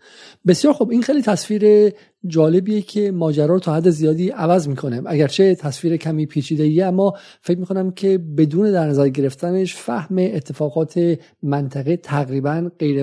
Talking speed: 145 wpm